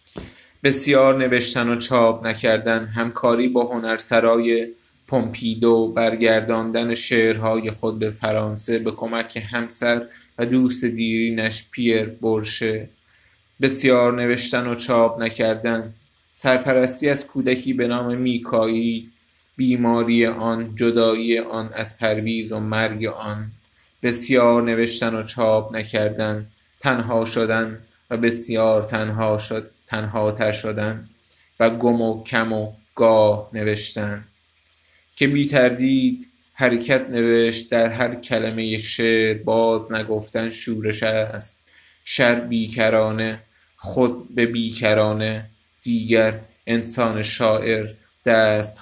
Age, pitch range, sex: 20-39, 110-115 Hz, male